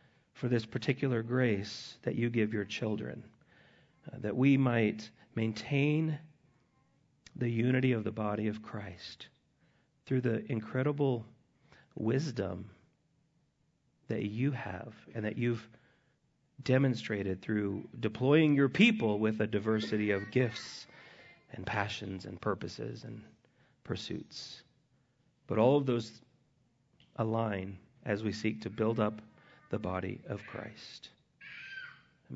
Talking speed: 115 wpm